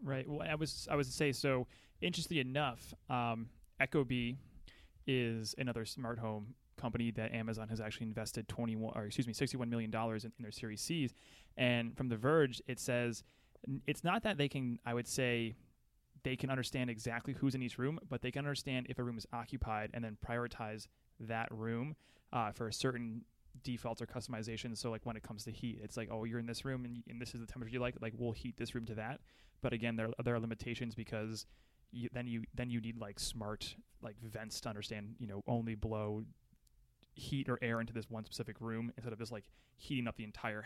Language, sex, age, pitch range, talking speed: English, male, 20-39, 110-125 Hz, 225 wpm